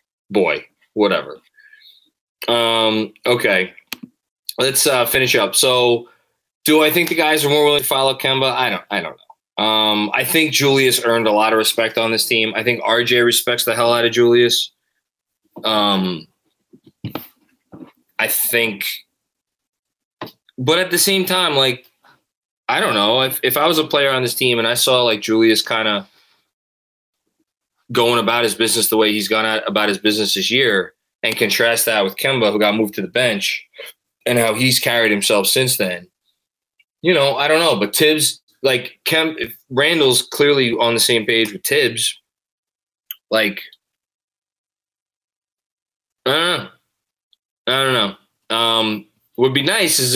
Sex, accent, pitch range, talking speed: male, American, 110-145 Hz, 165 wpm